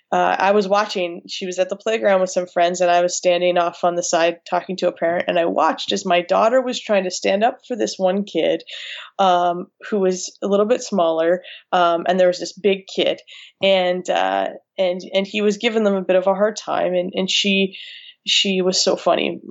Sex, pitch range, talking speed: female, 180-220 Hz, 230 wpm